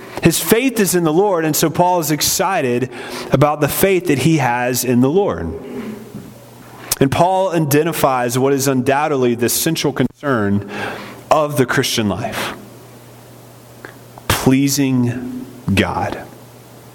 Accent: American